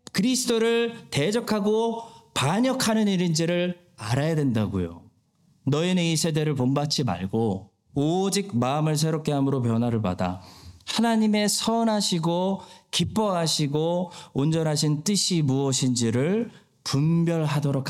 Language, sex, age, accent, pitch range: Korean, male, 40-59, native, 125-175 Hz